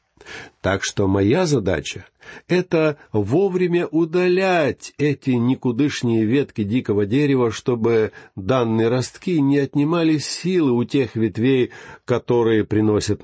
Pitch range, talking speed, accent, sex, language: 105-145 Hz, 105 wpm, native, male, Russian